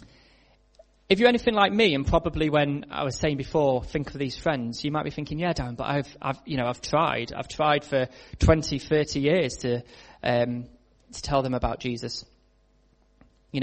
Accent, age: British, 20-39